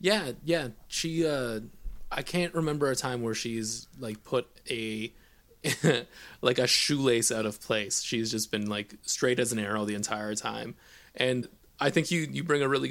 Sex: male